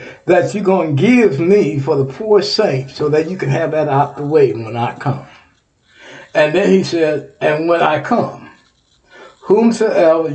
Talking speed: 180 wpm